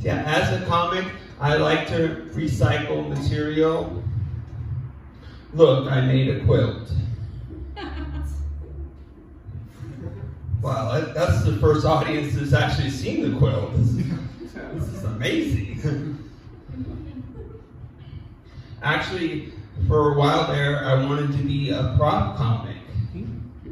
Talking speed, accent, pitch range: 100 wpm, American, 110-145 Hz